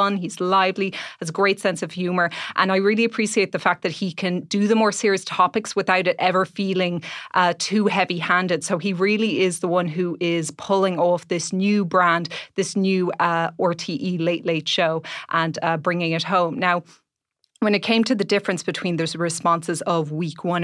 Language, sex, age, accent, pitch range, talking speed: English, female, 30-49, Irish, 170-195 Hz, 200 wpm